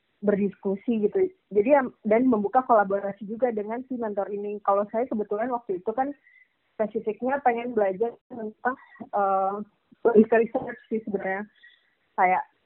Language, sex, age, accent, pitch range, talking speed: Indonesian, female, 20-39, native, 200-230 Hz, 125 wpm